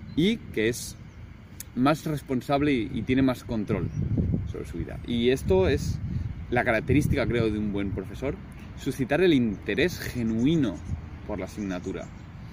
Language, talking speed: Spanish, 145 wpm